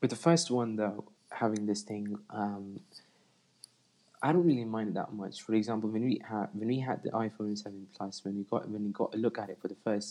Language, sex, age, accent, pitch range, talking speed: English, male, 20-39, British, 100-115 Hz, 245 wpm